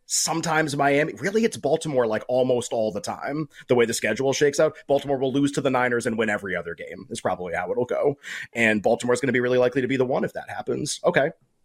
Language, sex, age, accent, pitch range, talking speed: English, male, 30-49, American, 115-145 Hz, 245 wpm